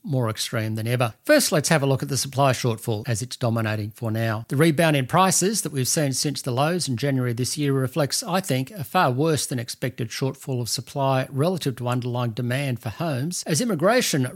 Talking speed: 215 wpm